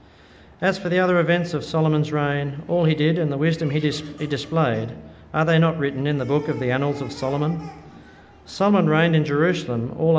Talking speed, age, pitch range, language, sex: 205 wpm, 50-69, 115-165 Hz, English, male